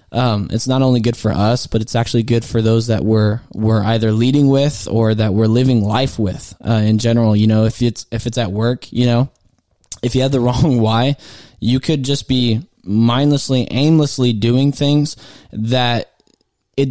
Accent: American